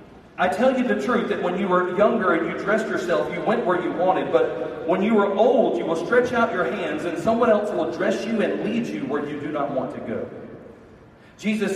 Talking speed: 240 wpm